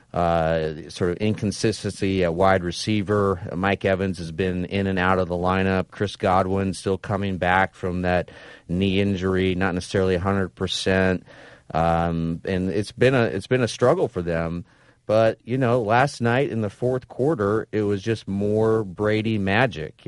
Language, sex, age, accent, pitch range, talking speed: English, male, 30-49, American, 90-110 Hz, 165 wpm